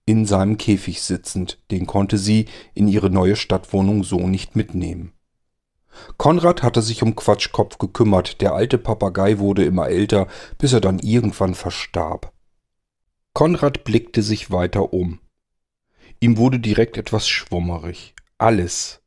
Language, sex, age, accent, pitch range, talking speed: German, male, 40-59, German, 95-120 Hz, 130 wpm